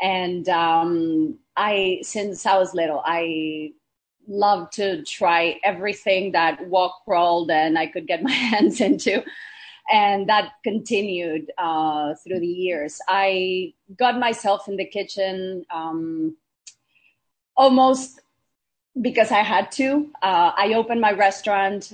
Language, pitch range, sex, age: English, 170-215 Hz, female, 30-49